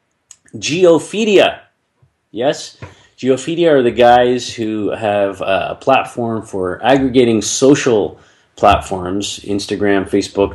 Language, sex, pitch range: English, male, 95-120 Hz